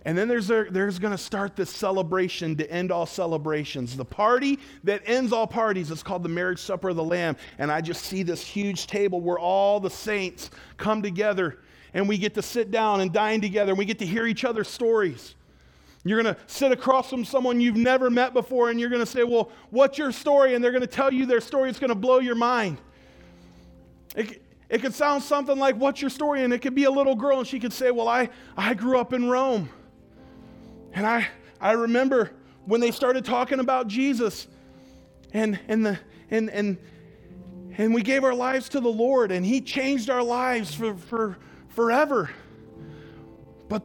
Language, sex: English, male